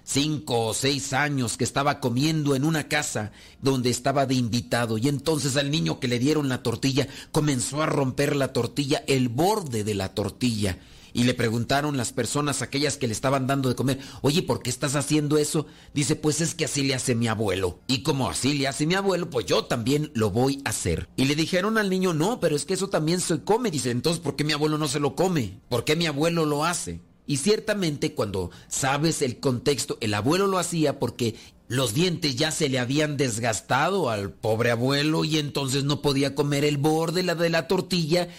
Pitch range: 125-155 Hz